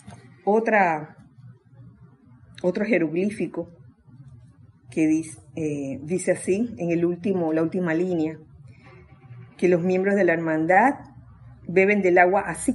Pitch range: 155-195 Hz